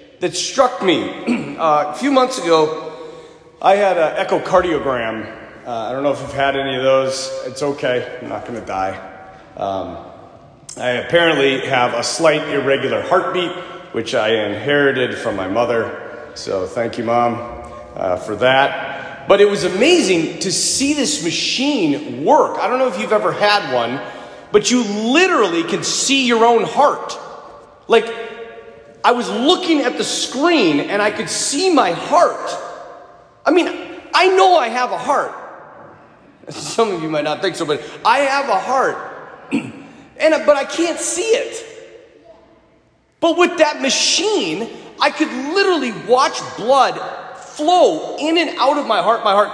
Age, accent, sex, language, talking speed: 30-49, American, male, English, 160 wpm